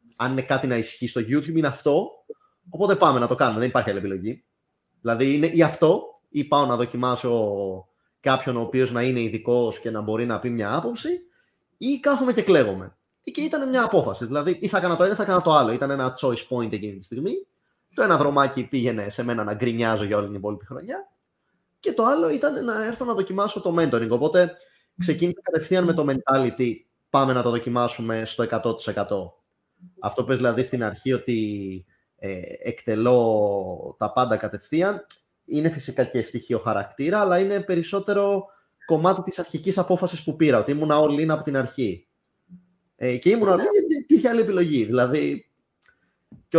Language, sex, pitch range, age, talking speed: Greek, male, 115-180 Hz, 20-39, 185 wpm